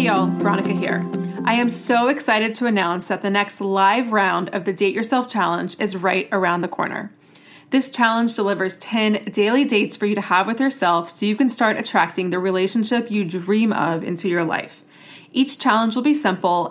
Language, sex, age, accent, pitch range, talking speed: English, female, 20-39, American, 190-230 Hz, 195 wpm